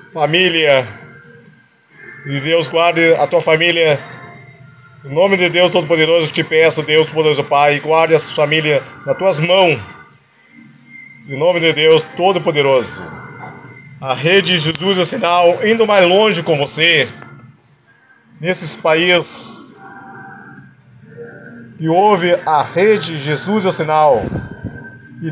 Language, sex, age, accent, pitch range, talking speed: Portuguese, male, 40-59, Brazilian, 145-170 Hz, 120 wpm